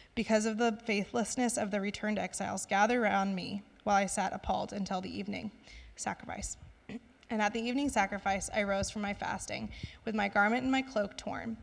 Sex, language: female, English